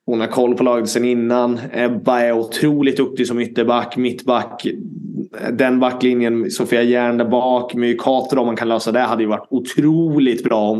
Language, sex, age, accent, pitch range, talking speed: Swedish, male, 20-39, native, 110-125 Hz, 165 wpm